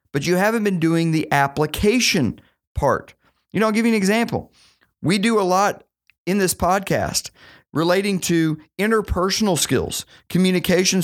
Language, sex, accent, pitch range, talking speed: English, male, American, 135-200 Hz, 145 wpm